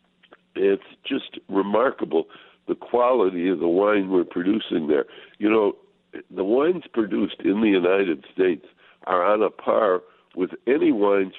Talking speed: 140 wpm